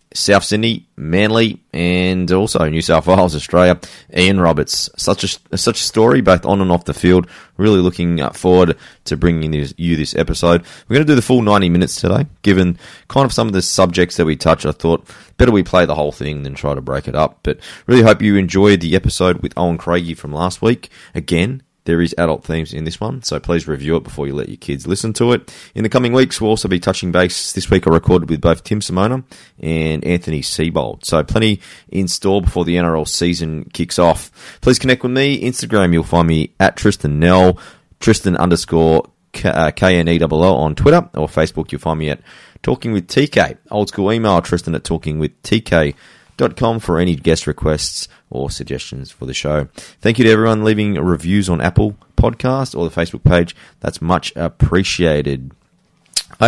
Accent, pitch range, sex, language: Australian, 80-100 Hz, male, English